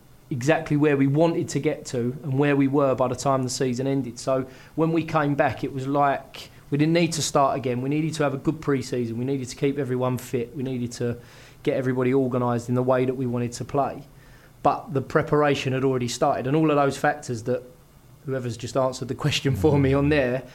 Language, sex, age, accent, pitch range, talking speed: English, male, 20-39, British, 125-140 Hz, 230 wpm